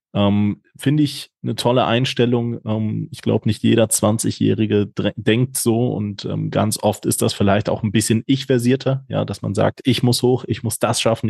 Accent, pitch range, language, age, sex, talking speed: German, 105-120 Hz, German, 20-39, male, 195 wpm